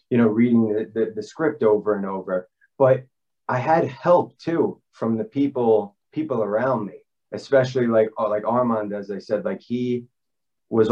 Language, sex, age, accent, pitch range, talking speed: English, male, 30-49, American, 110-130 Hz, 170 wpm